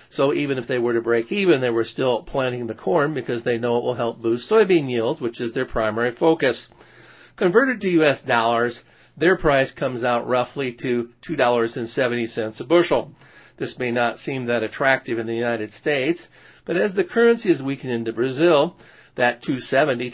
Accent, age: American, 50-69